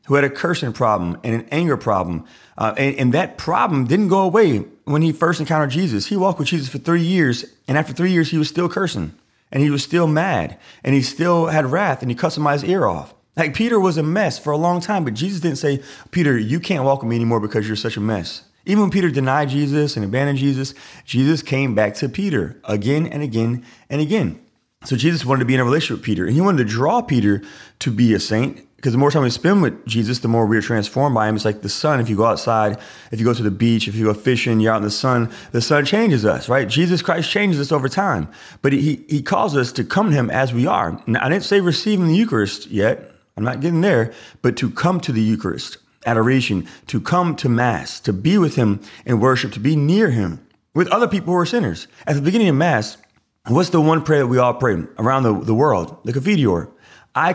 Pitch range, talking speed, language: 115-165 Hz, 245 wpm, English